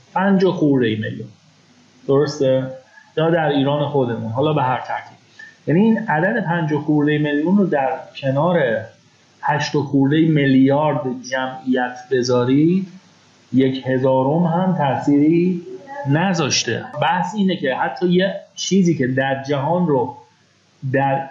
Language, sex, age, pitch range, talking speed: Persian, male, 30-49, 135-170 Hz, 120 wpm